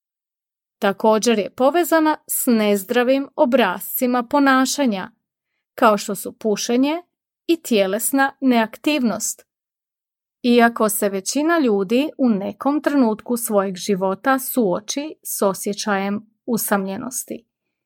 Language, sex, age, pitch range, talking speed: Croatian, female, 30-49, 210-275 Hz, 90 wpm